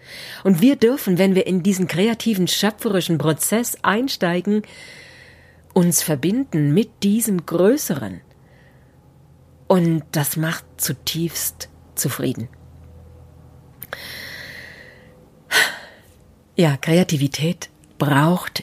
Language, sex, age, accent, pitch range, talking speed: German, female, 40-59, German, 150-195 Hz, 75 wpm